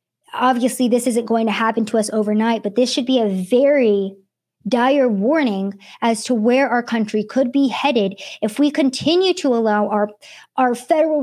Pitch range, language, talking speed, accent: 220-255 Hz, English, 175 wpm, American